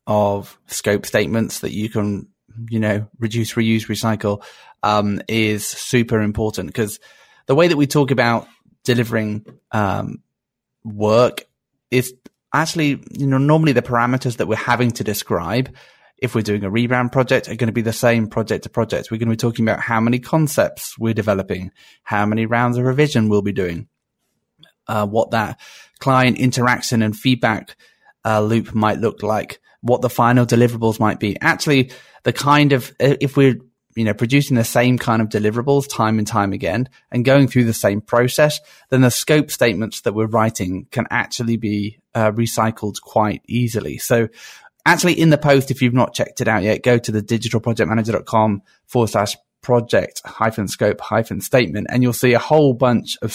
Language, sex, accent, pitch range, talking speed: English, male, British, 110-130 Hz, 175 wpm